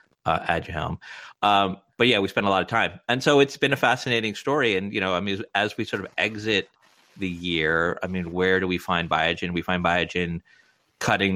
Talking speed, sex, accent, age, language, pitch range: 215 wpm, male, American, 30-49, English, 85-100 Hz